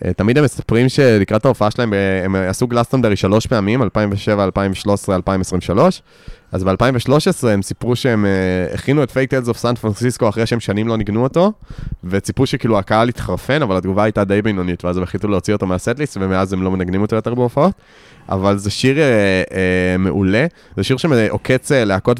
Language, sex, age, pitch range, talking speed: Hebrew, male, 20-39, 100-120 Hz, 175 wpm